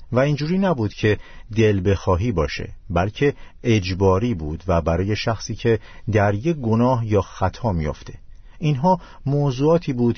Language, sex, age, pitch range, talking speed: Persian, male, 50-69, 95-120 Hz, 135 wpm